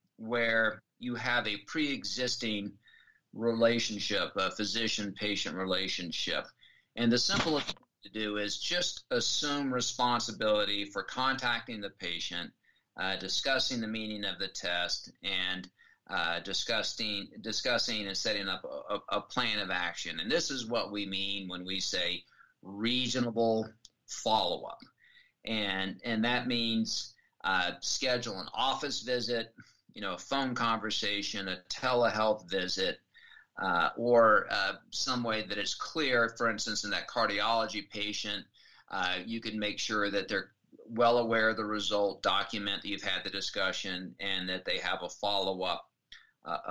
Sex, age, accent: male, 50-69, American